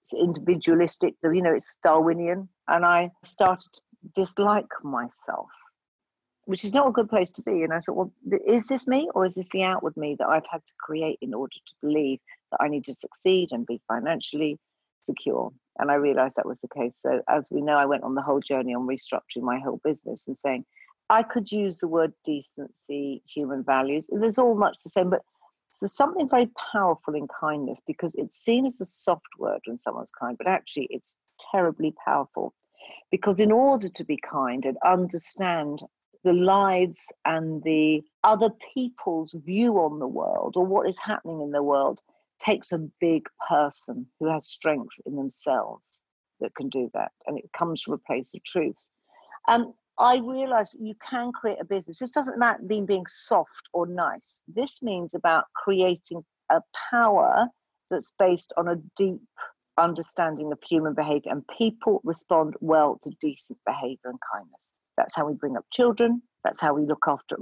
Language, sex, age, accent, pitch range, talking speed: English, female, 50-69, British, 150-205 Hz, 185 wpm